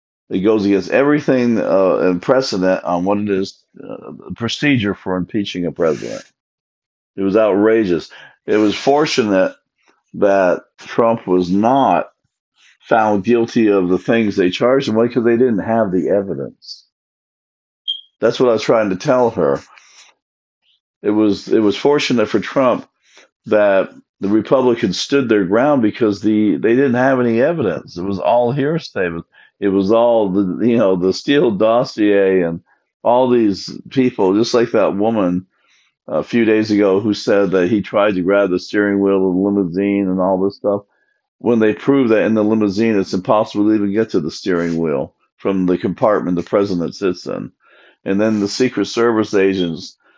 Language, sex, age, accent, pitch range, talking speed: English, male, 50-69, American, 95-115 Hz, 170 wpm